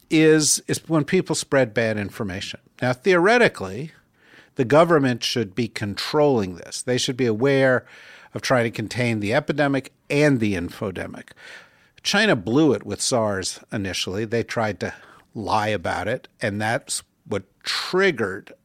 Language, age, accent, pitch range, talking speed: English, 50-69, American, 110-145 Hz, 140 wpm